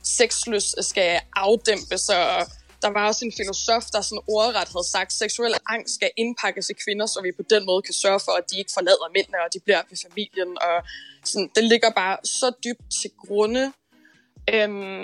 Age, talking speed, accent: 20-39, 195 wpm, native